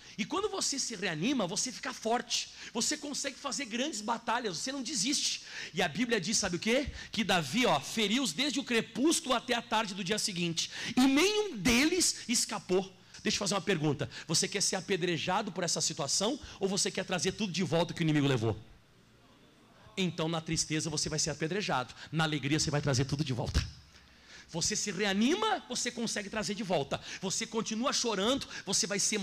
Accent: Brazilian